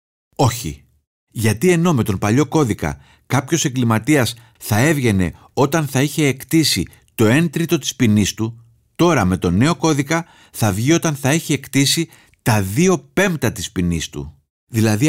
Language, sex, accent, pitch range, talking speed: Greek, male, native, 100-150 Hz, 155 wpm